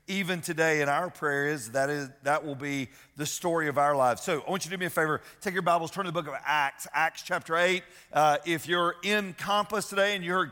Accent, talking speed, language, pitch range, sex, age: American, 245 wpm, English, 170-205 Hz, male, 40-59